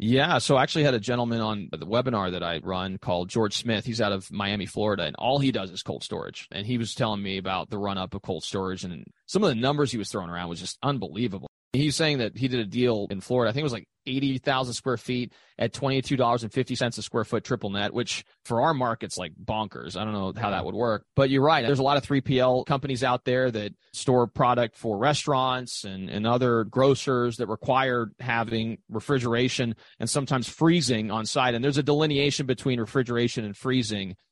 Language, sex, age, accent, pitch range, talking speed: English, male, 30-49, American, 105-130 Hz, 240 wpm